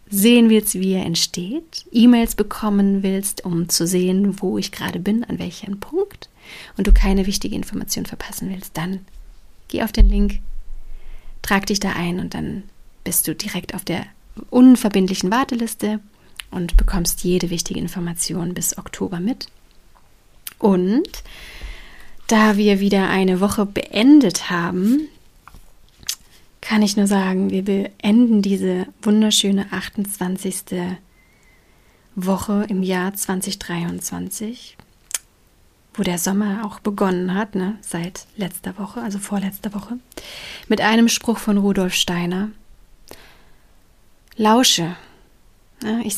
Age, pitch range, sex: 30-49, 185-215 Hz, female